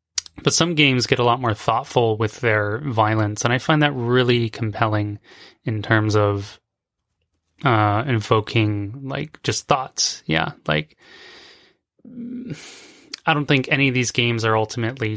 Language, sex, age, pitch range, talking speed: English, male, 20-39, 105-130 Hz, 140 wpm